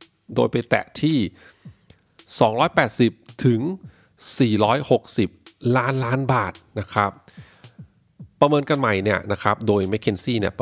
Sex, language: male, English